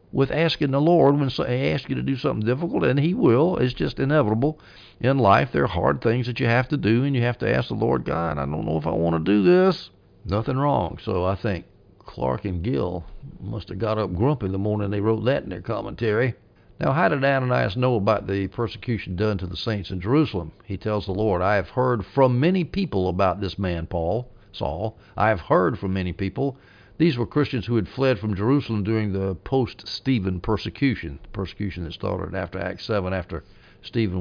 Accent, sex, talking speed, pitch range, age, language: American, male, 220 wpm, 95-135 Hz, 60-79, English